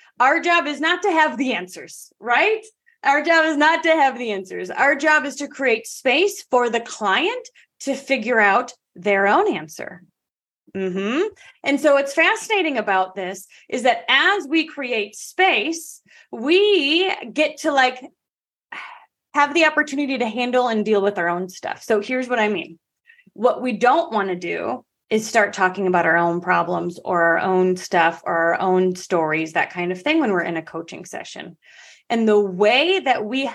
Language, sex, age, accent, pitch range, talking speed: English, female, 30-49, American, 205-305 Hz, 180 wpm